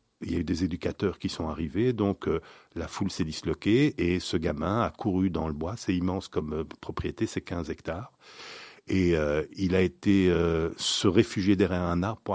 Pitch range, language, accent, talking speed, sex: 85-105 Hz, French, French, 205 wpm, male